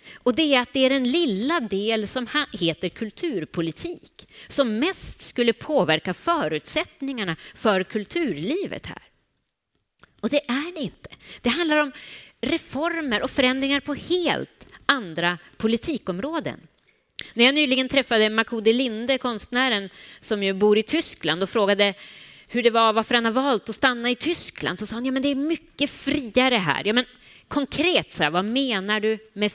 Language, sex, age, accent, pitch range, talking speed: Swedish, female, 30-49, native, 220-275 Hz, 160 wpm